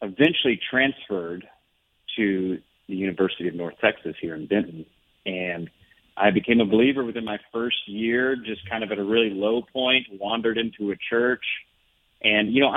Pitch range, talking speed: 90-110 Hz, 165 wpm